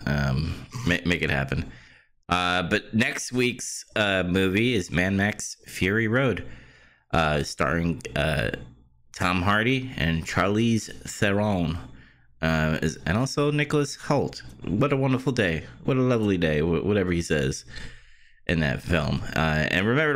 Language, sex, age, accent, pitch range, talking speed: English, male, 30-49, American, 85-120 Hz, 135 wpm